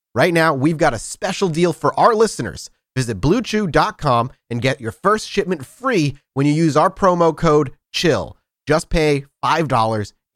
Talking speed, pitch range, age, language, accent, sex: 160 wpm, 120-180 Hz, 30-49, English, American, male